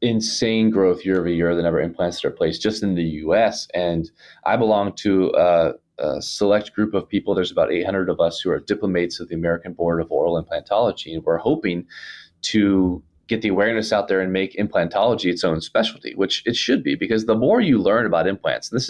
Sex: male